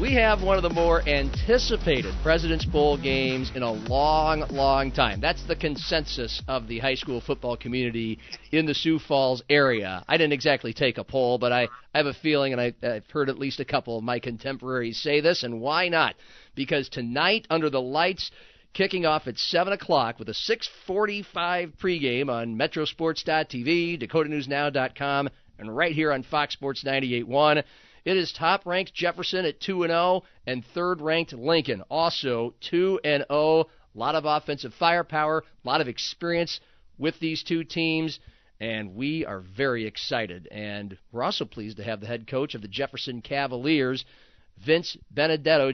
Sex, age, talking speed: male, 40-59, 170 wpm